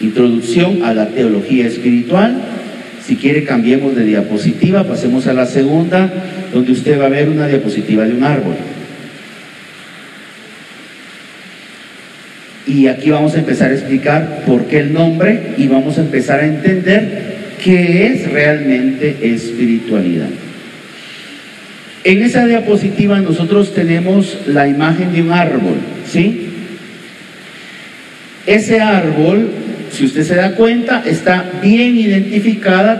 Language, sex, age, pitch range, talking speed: Italian, male, 50-69, 150-215 Hz, 120 wpm